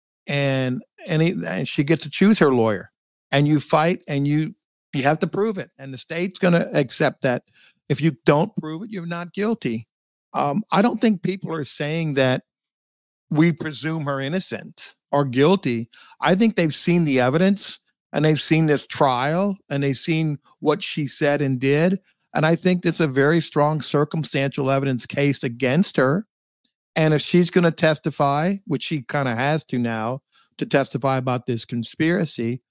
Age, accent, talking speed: 50-69, American, 180 wpm